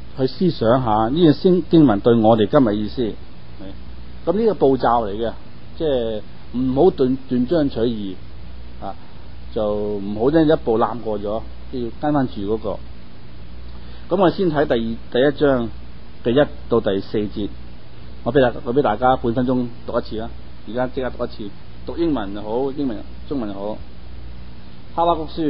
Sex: male